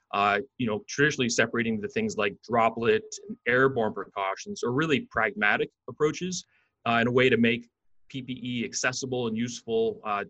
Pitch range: 115-155 Hz